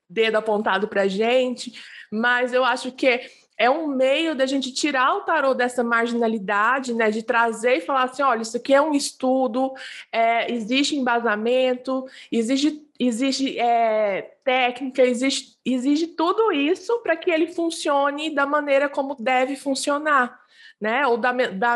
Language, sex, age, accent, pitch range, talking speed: Portuguese, female, 20-39, Brazilian, 235-280 Hz, 150 wpm